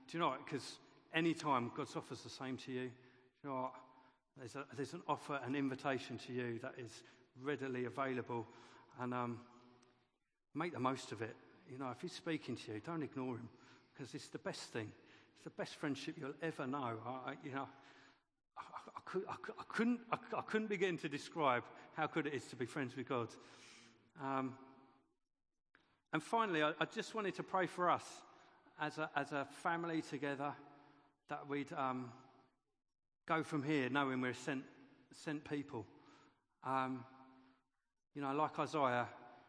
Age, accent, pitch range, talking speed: 50-69, British, 125-155 Hz, 175 wpm